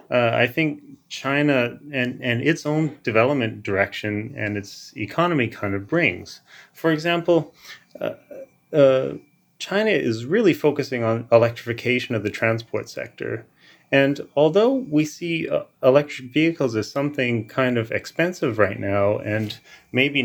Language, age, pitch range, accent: English, 30-49, 110-145 Hz, American